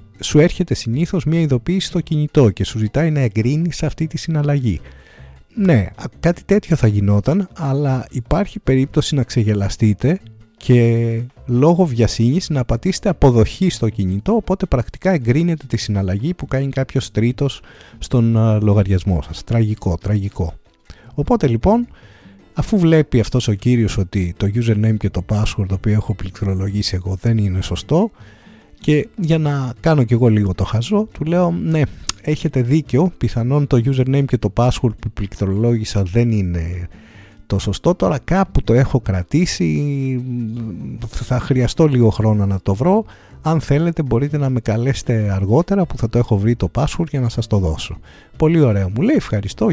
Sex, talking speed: male, 155 wpm